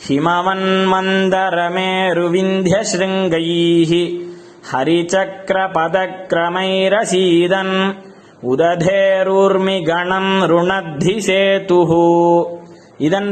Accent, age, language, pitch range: native, 20-39, Tamil, 170-195 Hz